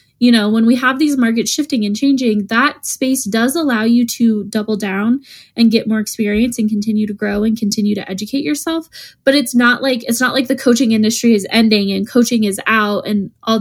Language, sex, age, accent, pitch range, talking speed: English, female, 10-29, American, 210-245 Hz, 215 wpm